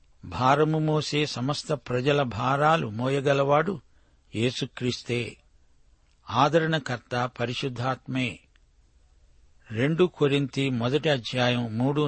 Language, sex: Telugu, male